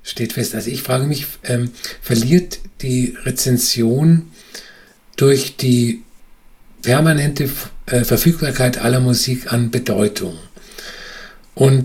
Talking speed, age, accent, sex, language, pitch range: 100 wpm, 50-69, German, male, German, 120-140 Hz